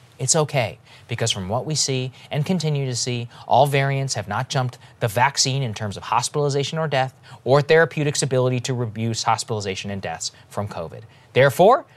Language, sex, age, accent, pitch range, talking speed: English, male, 20-39, American, 125-180 Hz, 175 wpm